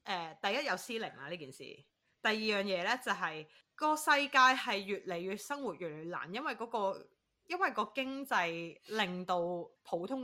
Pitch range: 165-230 Hz